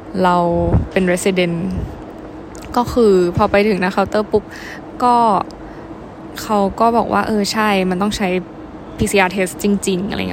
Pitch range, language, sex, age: 185-220 Hz, Thai, female, 10-29